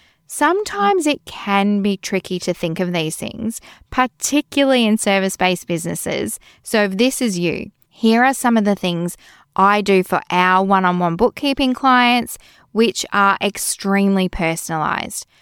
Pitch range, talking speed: 180-235 Hz, 140 wpm